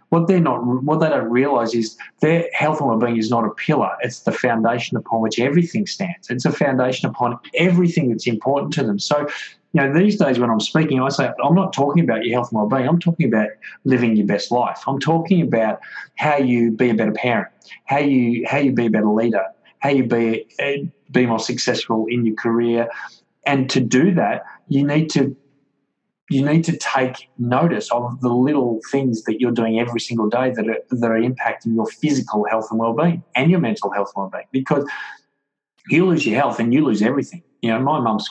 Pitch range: 115-150 Hz